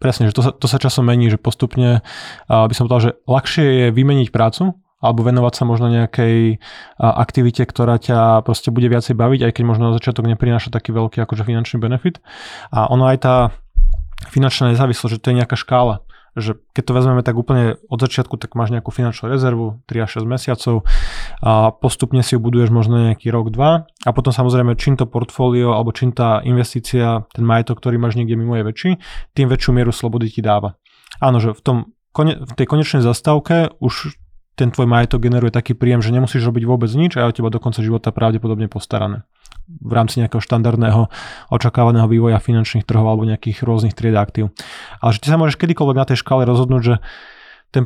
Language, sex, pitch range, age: Slovak, male, 115-130 Hz, 20-39